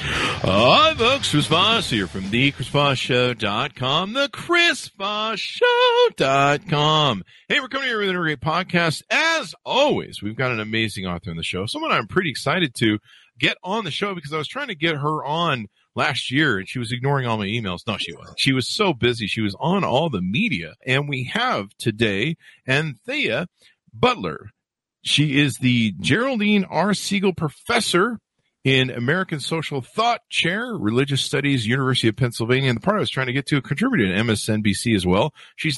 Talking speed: 175 wpm